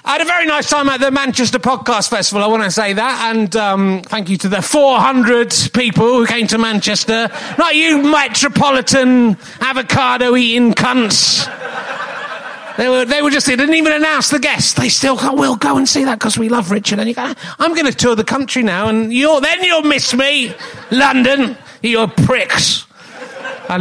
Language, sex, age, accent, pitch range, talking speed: English, male, 30-49, British, 200-265 Hz, 190 wpm